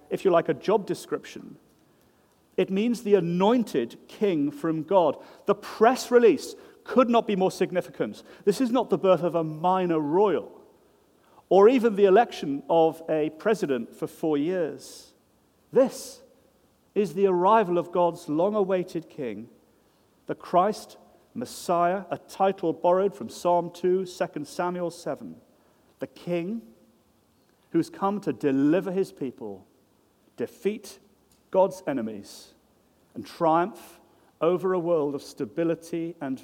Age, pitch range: 40-59, 150-200 Hz